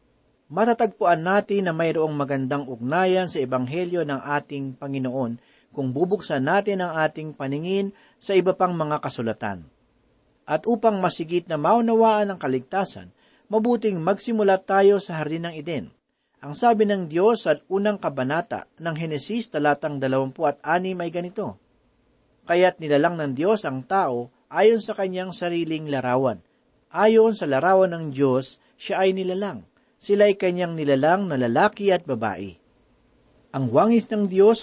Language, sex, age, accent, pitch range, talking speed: Filipino, male, 40-59, native, 140-200 Hz, 140 wpm